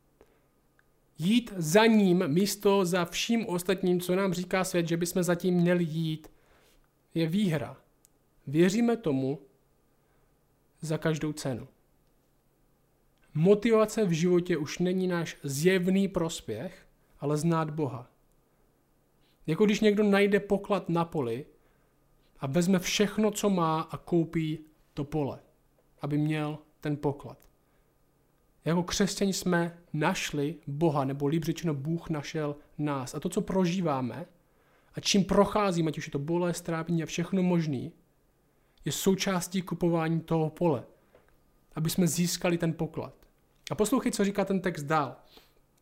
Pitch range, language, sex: 155-190 Hz, Czech, male